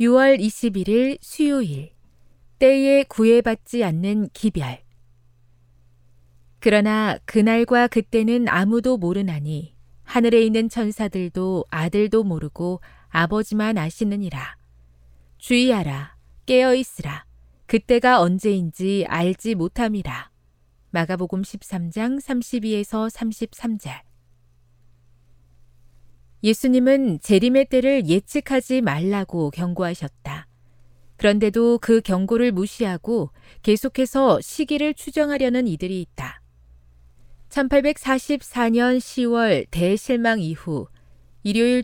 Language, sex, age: Korean, female, 40-59